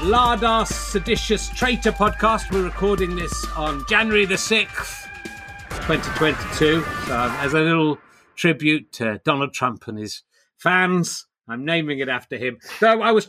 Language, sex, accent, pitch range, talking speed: English, male, British, 135-205 Hz, 140 wpm